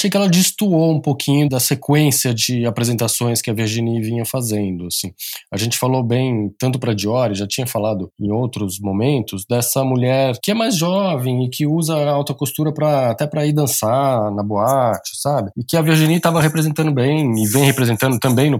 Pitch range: 110-145 Hz